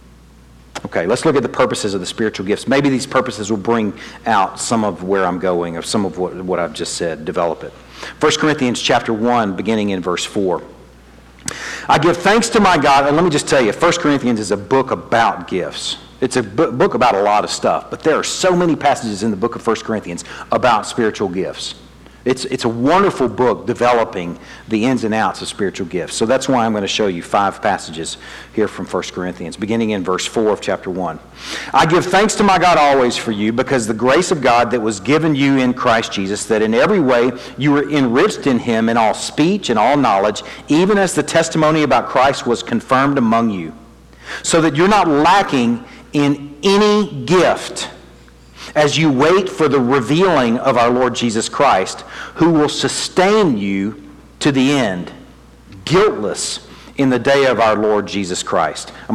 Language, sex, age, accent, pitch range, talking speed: English, male, 50-69, American, 105-155 Hz, 200 wpm